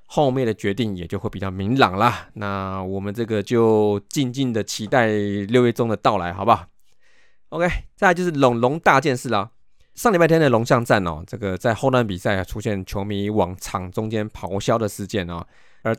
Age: 20-39